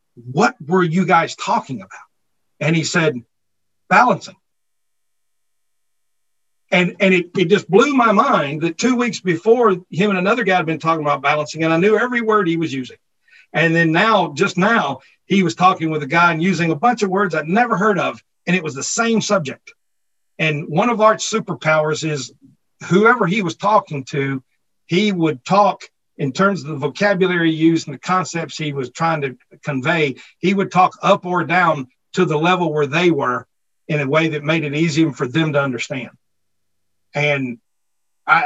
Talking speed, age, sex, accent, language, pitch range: 185 wpm, 50-69, male, American, English, 150-195 Hz